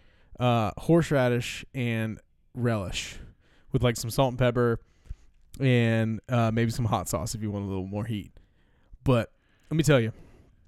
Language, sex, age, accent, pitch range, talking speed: English, male, 20-39, American, 110-135 Hz, 155 wpm